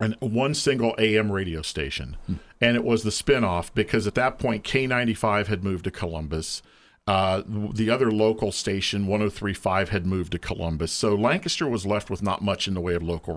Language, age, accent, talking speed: English, 50-69, American, 190 wpm